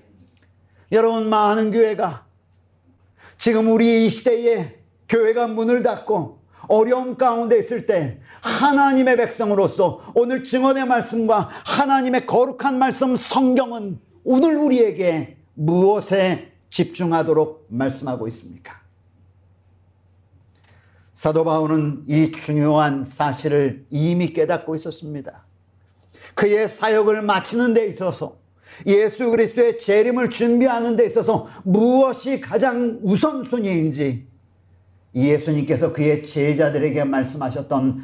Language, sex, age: Korean, male, 50-69